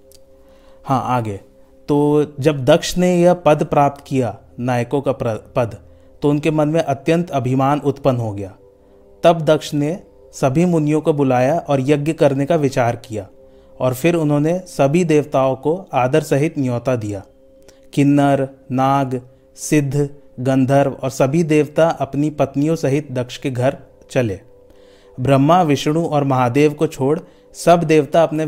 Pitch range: 130-150 Hz